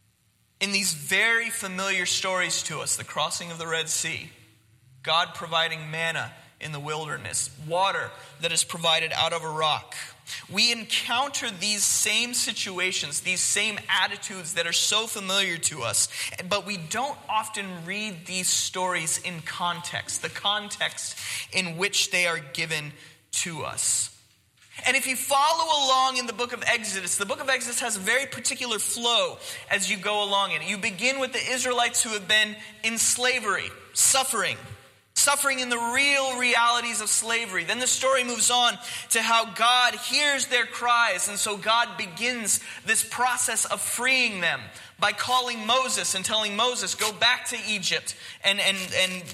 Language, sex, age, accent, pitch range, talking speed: English, male, 20-39, American, 175-245 Hz, 165 wpm